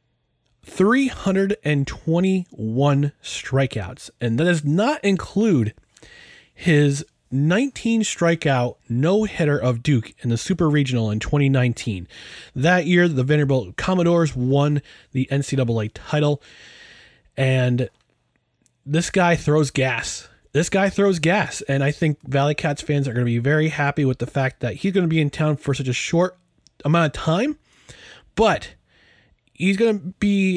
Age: 30-49